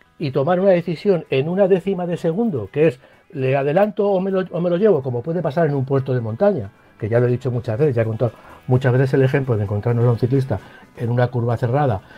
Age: 60-79